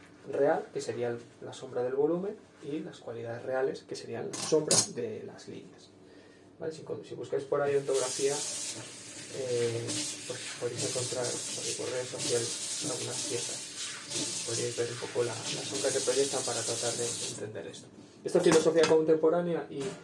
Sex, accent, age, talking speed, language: male, Spanish, 20-39, 160 wpm, Spanish